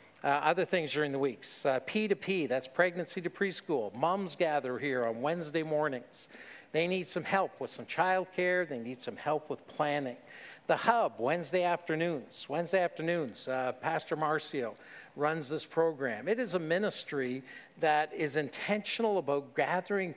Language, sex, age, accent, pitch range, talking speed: English, male, 50-69, American, 145-180 Hz, 160 wpm